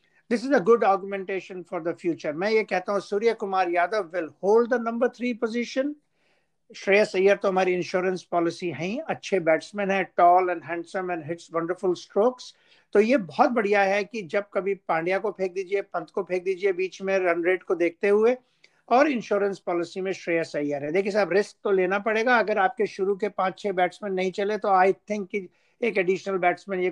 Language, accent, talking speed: Hindi, native, 205 wpm